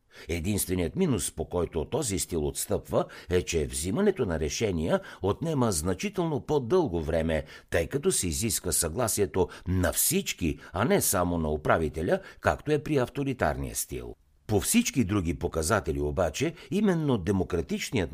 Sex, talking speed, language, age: male, 130 wpm, Bulgarian, 60-79